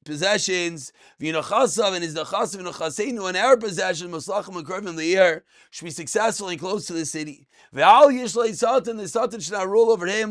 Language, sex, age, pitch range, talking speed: English, male, 30-49, 170-210 Hz, 175 wpm